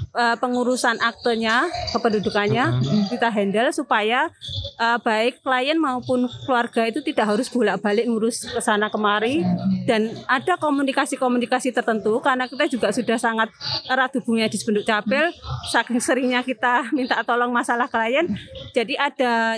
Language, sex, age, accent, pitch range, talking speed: Indonesian, female, 30-49, native, 220-260 Hz, 130 wpm